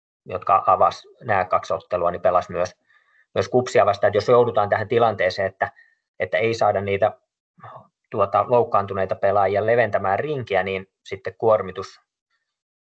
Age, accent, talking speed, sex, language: 20-39, native, 130 wpm, male, Finnish